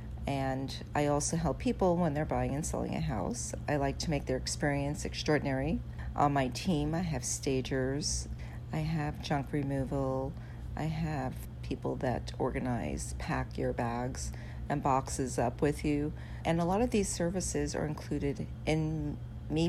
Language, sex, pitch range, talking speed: English, female, 120-155 Hz, 160 wpm